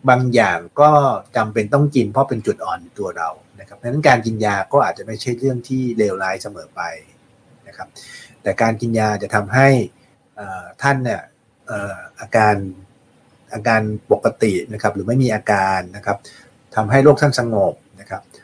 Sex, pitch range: male, 105-130 Hz